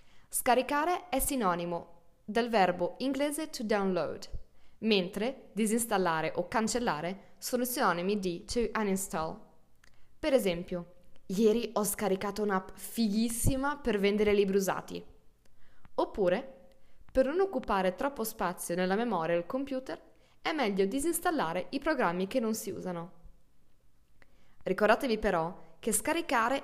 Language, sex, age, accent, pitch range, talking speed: Italian, female, 20-39, native, 185-260 Hz, 115 wpm